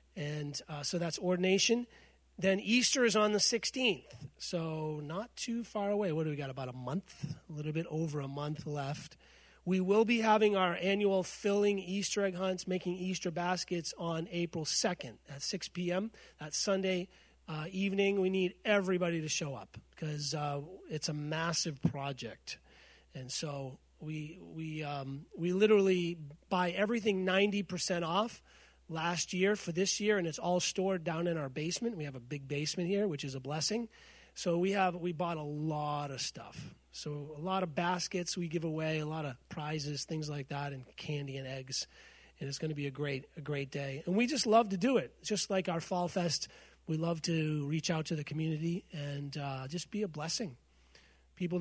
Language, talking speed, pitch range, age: English, 185 wpm, 150-190 Hz, 30-49